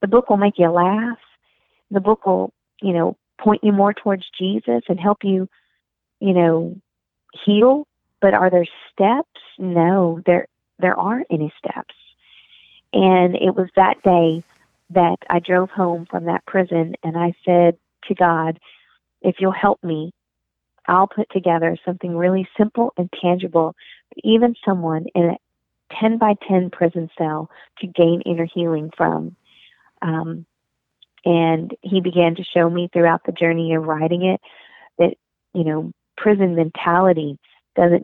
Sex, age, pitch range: female, 40-59, 165-190 Hz